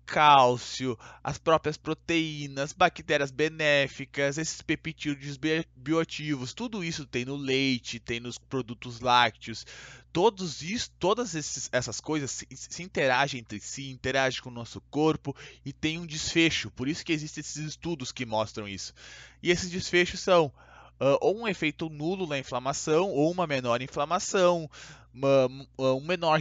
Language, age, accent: Portuguese, 20-39, Brazilian